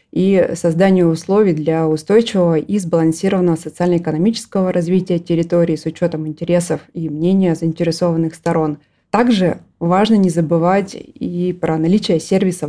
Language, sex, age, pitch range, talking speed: Russian, female, 20-39, 160-185 Hz, 120 wpm